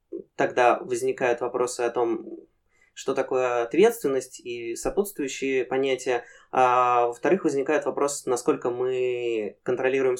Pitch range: 130-190 Hz